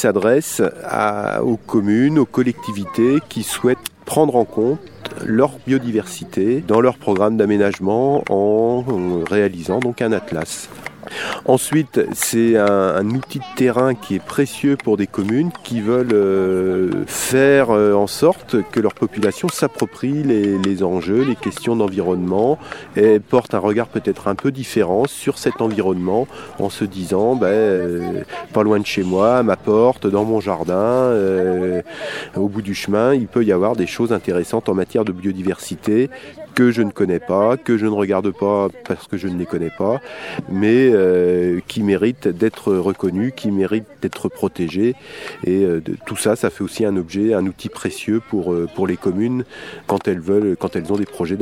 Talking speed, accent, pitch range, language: 170 wpm, French, 95-120 Hz, French